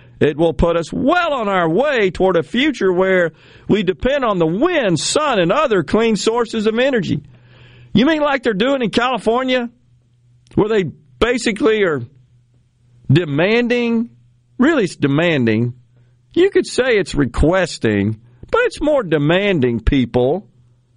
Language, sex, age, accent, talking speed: English, male, 50-69, American, 140 wpm